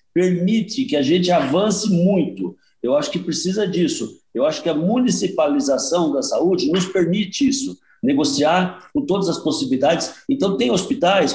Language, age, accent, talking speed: Portuguese, 60-79, Brazilian, 155 wpm